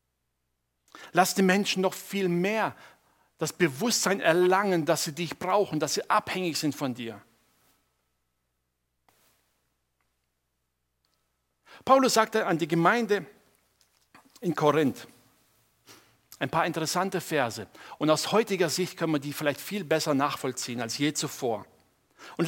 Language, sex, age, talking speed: German, male, 50-69, 120 wpm